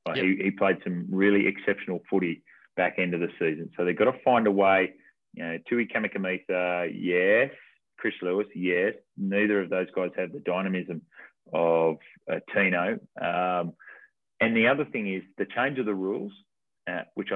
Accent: Australian